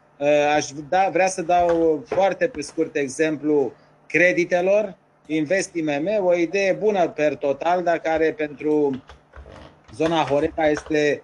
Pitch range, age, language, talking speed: 145-175 Hz, 30-49, Romanian, 110 wpm